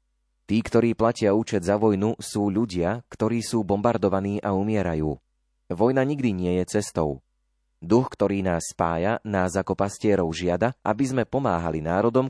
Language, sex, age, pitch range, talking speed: Slovak, male, 30-49, 85-105 Hz, 145 wpm